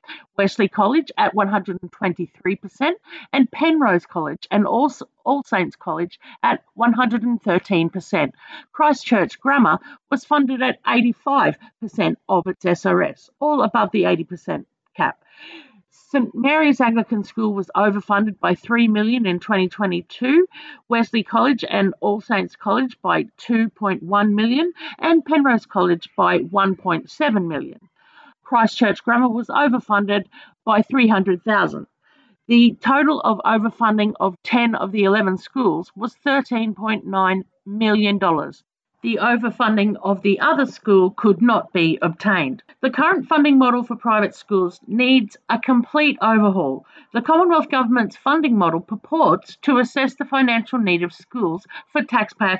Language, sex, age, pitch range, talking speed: English, female, 50-69, 200-275 Hz, 125 wpm